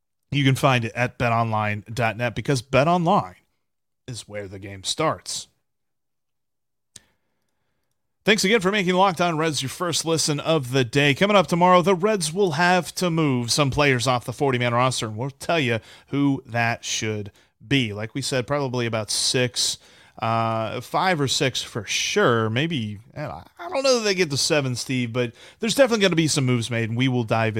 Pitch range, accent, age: 120-175 Hz, American, 30-49